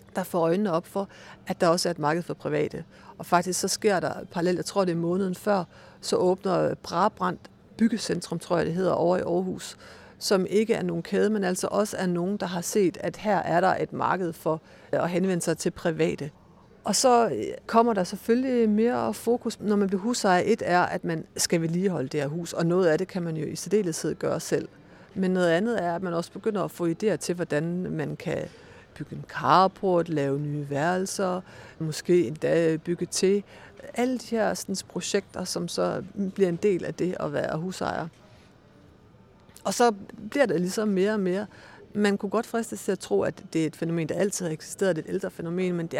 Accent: native